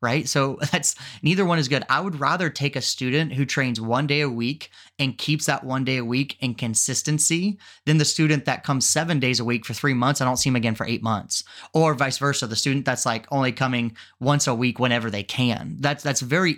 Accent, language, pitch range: American, English, 125-160 Hz